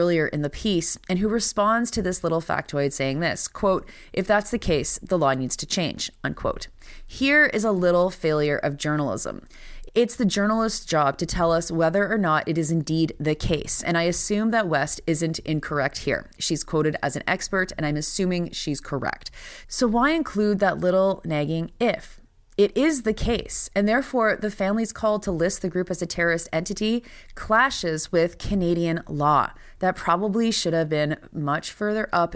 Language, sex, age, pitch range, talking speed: English, female, 30-49, 150-200 Hz, 185 wpm